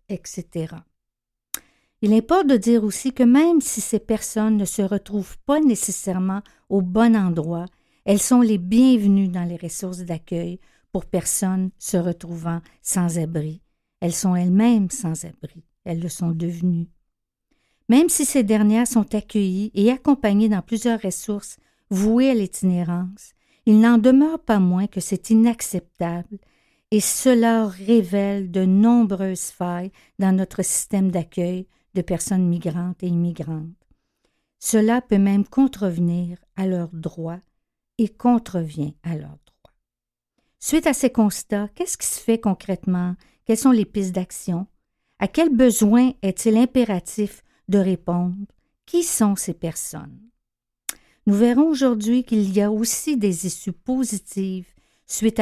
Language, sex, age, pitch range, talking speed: French, female, 50-69, 175-225 Hz, 135 wpm